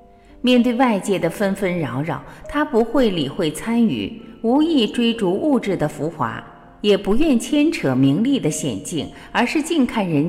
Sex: female